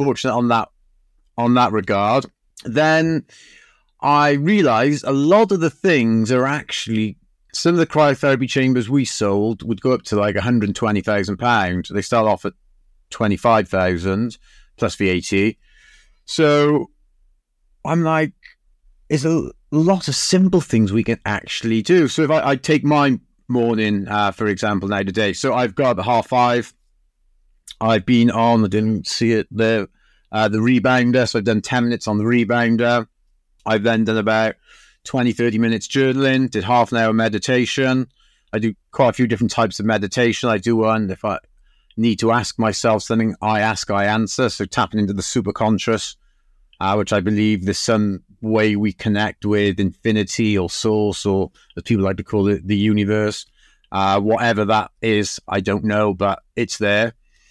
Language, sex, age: English, male, 40-59